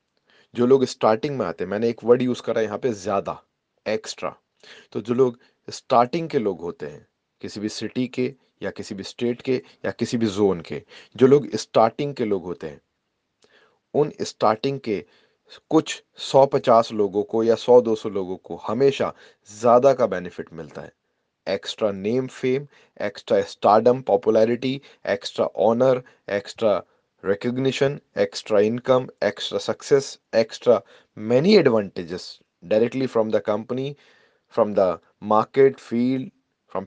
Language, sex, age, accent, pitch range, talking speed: English, male, 30-49, Indian, 105-130 Hz, 145 wpm